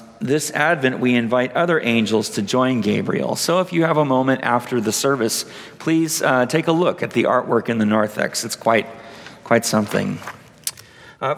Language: English